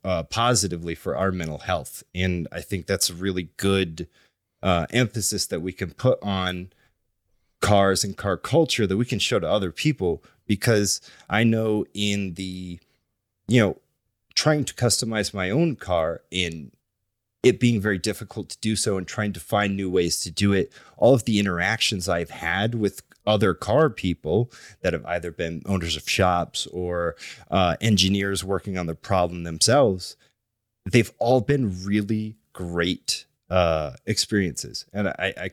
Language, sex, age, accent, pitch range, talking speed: English, male, 30-49, American, 90-115 Hz, 160 wpm